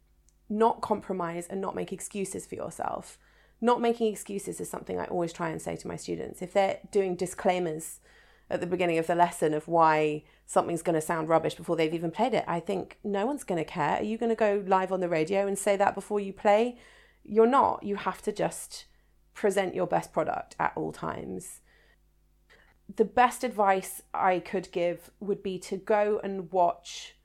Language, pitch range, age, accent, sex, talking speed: English, 175-210 Hz, 40-59, British, female, 200 wpm